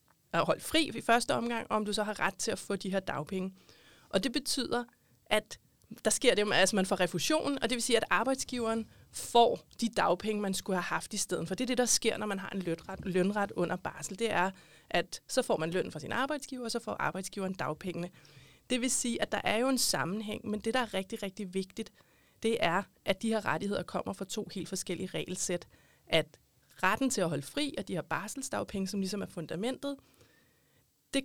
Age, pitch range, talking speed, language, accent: 30-49, 185-235 Hz, 220 wpm, Danish, native